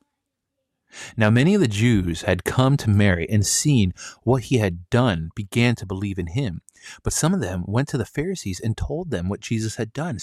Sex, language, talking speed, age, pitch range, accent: male, English, 205 wpm, 30-49, 95-120 Hz, American